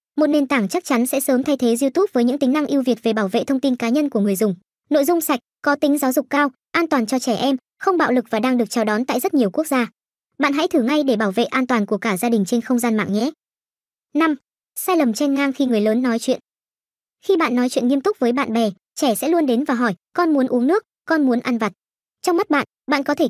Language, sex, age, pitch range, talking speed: Vietnamese, male, 20-39, 230-295 Hz, 280 wpm